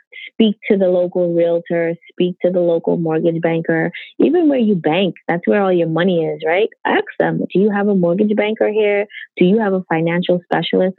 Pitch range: 165-210 Hz